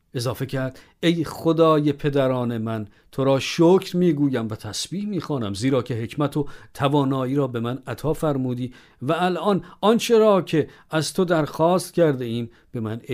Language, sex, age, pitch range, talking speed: Persian, male, 50-69, 120-165 Hz, 160 wpm